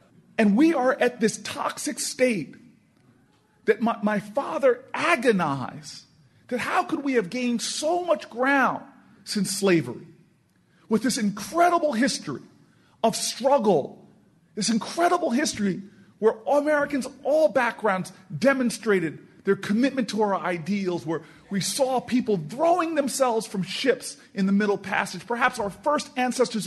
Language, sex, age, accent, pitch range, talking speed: English, male, 40-59, American, 195-275 Hz, 135 wpm